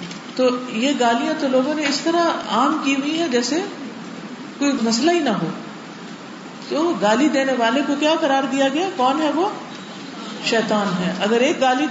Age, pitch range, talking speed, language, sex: 50-69, 200-275 Hz, 175 wpm, Urdu, female